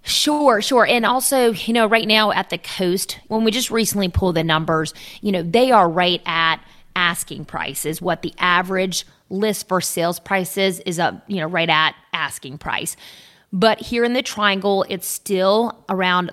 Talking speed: 185 wpm